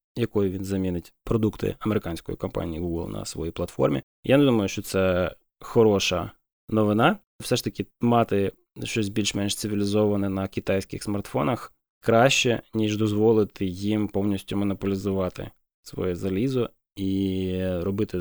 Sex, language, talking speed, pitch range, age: male, Ukrainian, 120 wpm, 95-110 Hz, 20-39